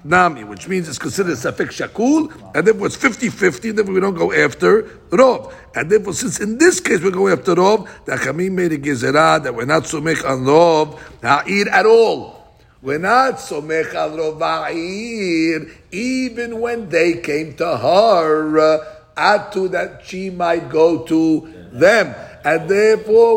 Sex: male